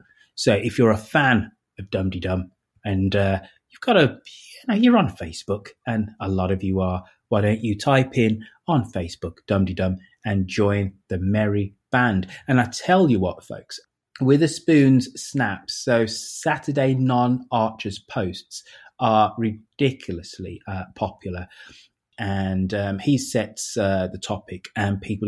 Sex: male